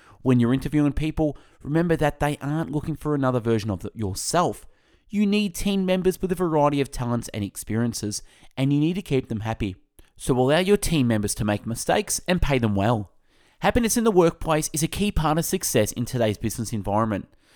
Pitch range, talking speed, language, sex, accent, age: 110-175 Hz, 200 wpm, English, male, Australian, 30-49